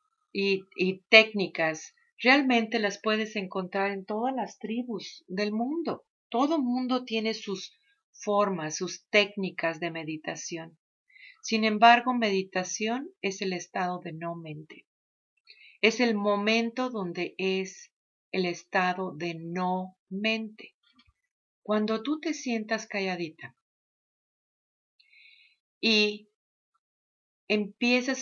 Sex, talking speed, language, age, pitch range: female, 100 wpm, English, 40-59, 185-240 Hz